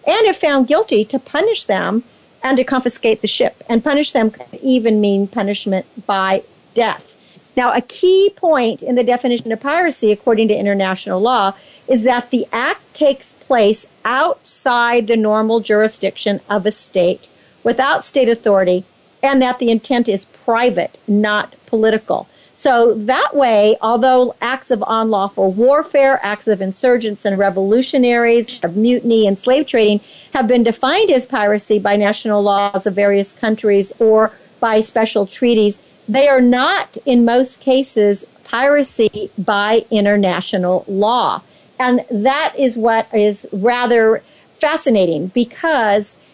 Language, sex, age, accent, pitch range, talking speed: English, female, 50-69, American, 210-260 Hz, 140 wpm